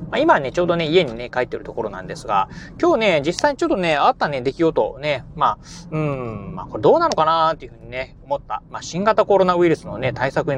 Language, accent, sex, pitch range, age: Japanese, native, male, 125-185 Hz, 30-49